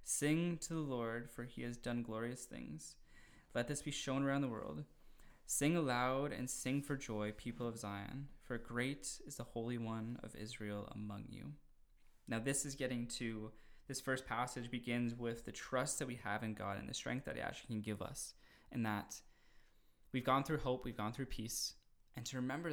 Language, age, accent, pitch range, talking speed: English, 20-39, American, 110-130 Hz, 200 wpm